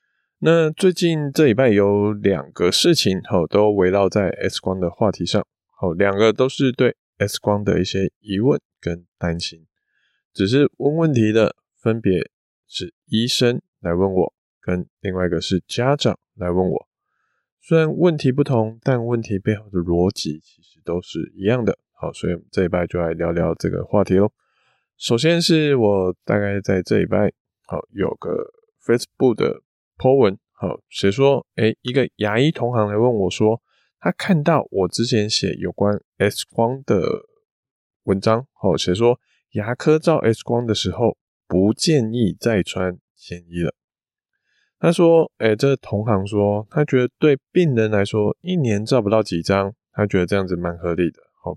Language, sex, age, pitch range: Chinese, male, 20-39, 95-135 Hz